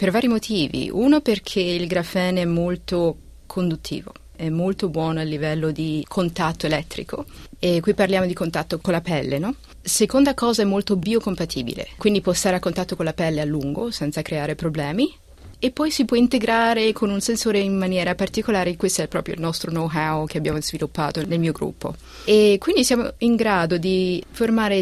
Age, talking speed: 30-49, 180 wpm